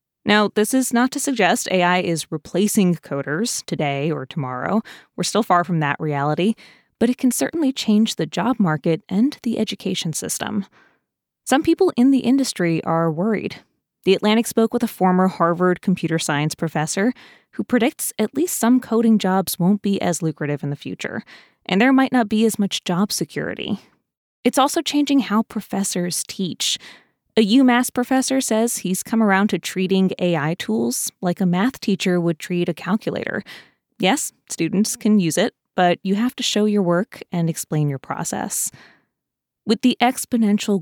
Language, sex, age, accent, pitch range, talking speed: English, female, 20-39, American, 170-230 Hz, 170 wpm